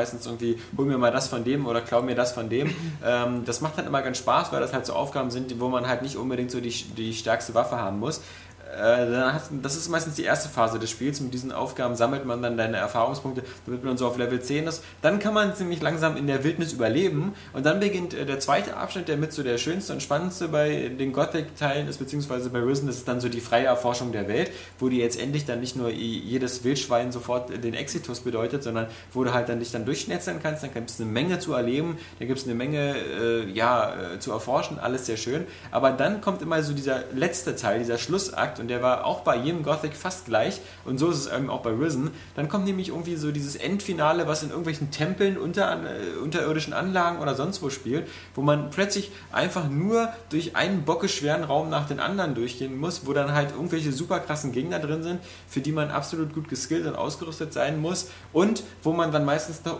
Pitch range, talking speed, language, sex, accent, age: 125-160 Hz, 225 wpm, German, male, German, 20-39